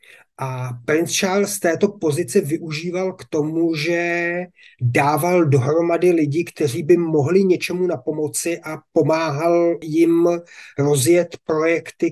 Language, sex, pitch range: Czech, male, 145-165 Hz